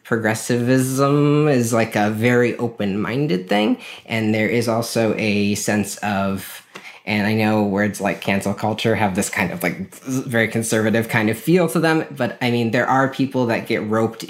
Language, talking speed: English, 175 wpm